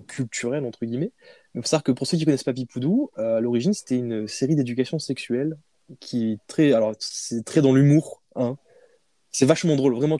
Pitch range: 120-155 Hz